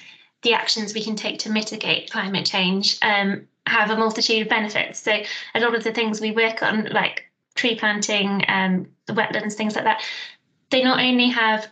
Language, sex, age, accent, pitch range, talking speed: English, female, 20-39, British, 200-225 Hz, 190 wpm